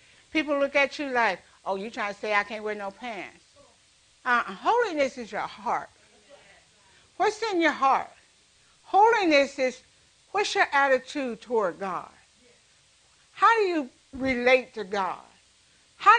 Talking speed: 140 wpm